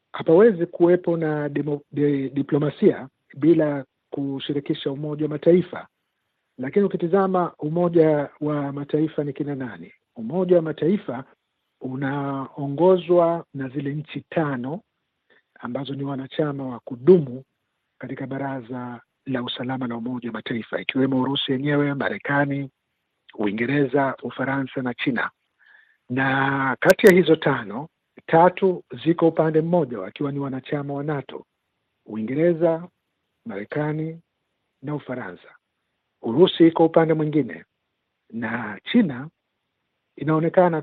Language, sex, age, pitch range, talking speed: Swahili, male, 50-69, 130-160 Hz, 105 wpm